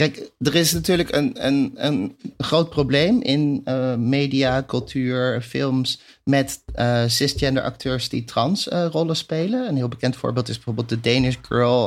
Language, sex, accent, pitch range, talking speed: Dutch, male, Dutch, 115-140 Hz, 160 wpm